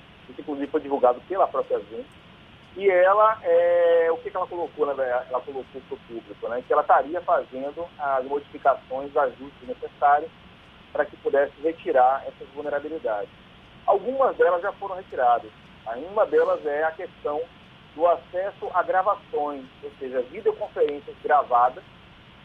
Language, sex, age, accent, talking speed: Portuguese, male, 40-59, Brazilian, 145 wpm